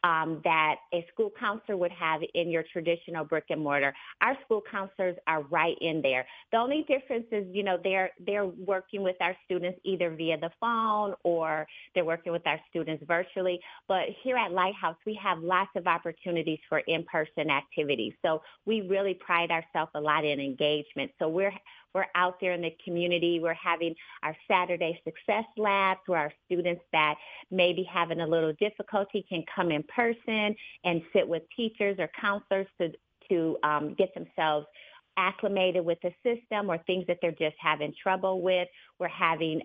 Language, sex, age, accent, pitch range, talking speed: English, female, 30-49, American, 165-195 Hz, 180 wpm